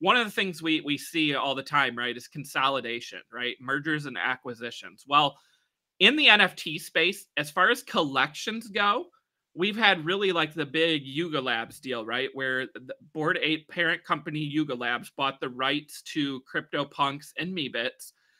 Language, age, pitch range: English, 30-49, 130-170 Hz